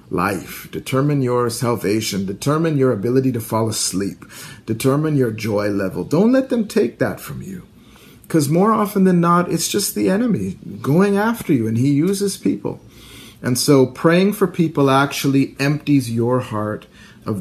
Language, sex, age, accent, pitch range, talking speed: English, male, 50-69, American, 110-140 Hz, 160 wpm